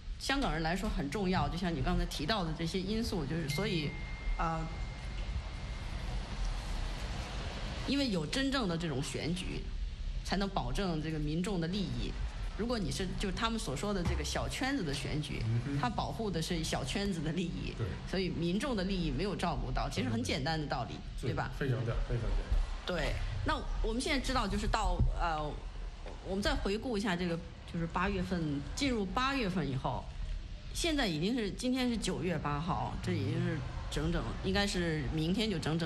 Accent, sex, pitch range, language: Chinese, female, 135-195 Hz, English